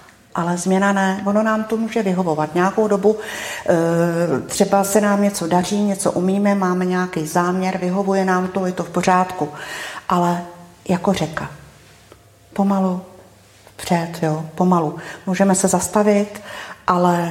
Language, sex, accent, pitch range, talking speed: Czech, female, native, 175-210 Hz, 130 wpm